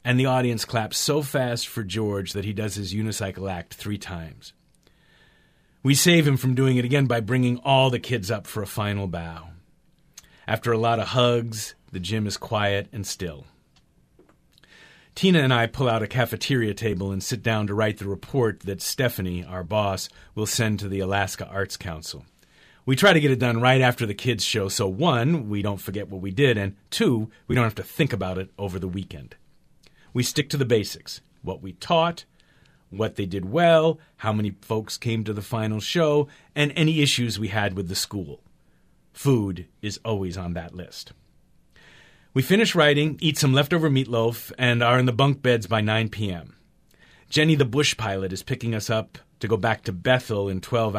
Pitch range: 100-130 Hz